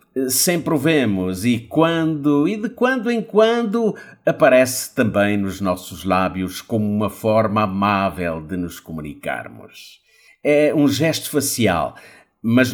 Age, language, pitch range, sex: 50-69, Portuguese, 105-160 Hz, male